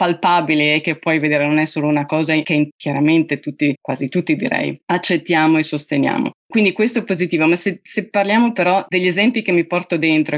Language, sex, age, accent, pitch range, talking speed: Italian, female, 30-49, native, 155-195 Hz, 195 wpm